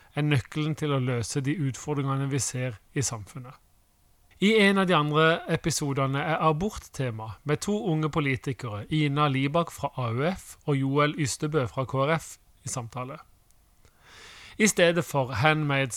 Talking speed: 145 wpm